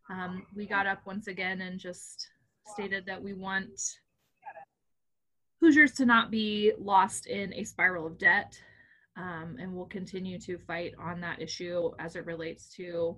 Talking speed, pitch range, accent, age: 155 wpm, 180-235 Hz, American, 20-39